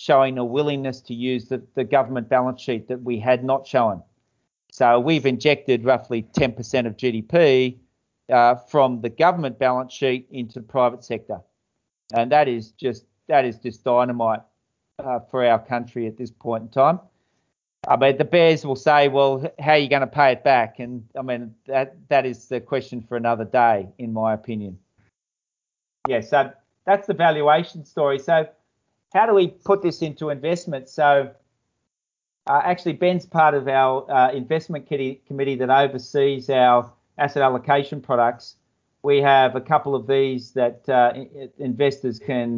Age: 40-59